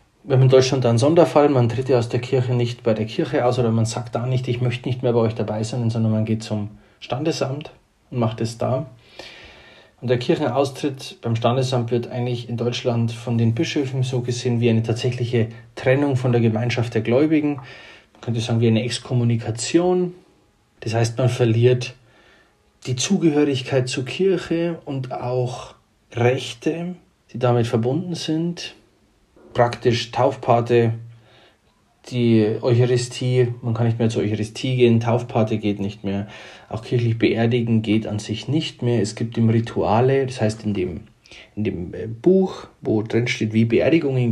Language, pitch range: German, 115-130 Hz